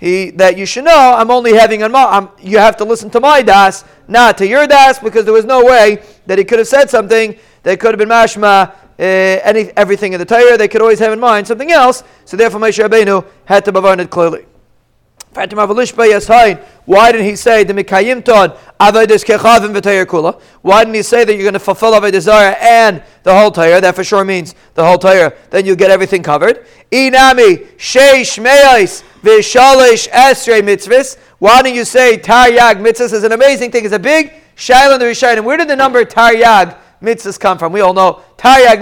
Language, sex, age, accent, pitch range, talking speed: English, male, 40-59, American, 205-275 Hz, 180 wpm